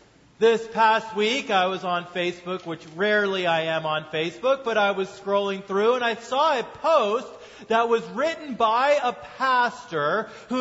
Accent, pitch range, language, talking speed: American, 180-235 Hz, English, 170 wpm